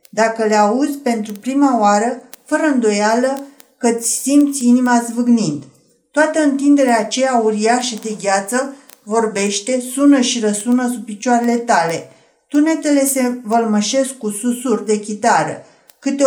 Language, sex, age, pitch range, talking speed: Romanian, female, 50-69, 215-260 Hz, 120 wpm